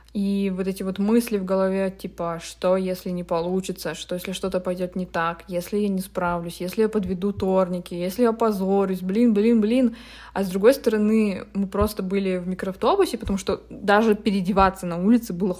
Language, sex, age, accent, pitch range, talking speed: Russian, female, 20-39, native, 185-215 Hz, 175 wpm